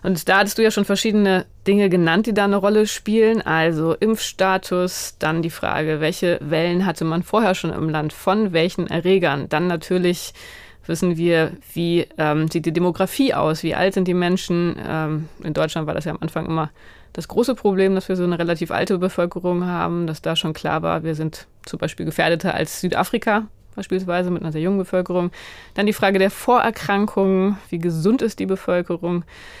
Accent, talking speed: German, 190 wpm